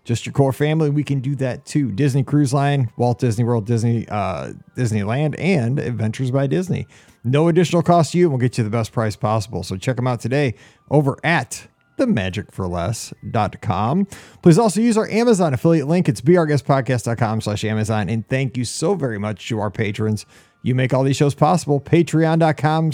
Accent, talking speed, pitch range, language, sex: American, 185 wpm, 115-160 Hz, English, male